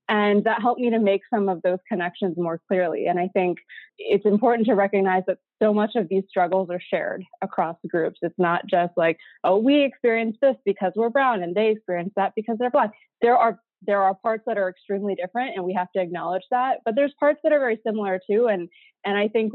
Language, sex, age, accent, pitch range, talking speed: Telugu, female, 20-39, American, 180-215 Hz, 225 wpm